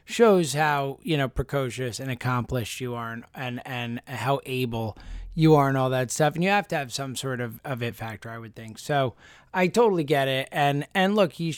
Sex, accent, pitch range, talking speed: male, American, 130-165 Hz, 225 wpm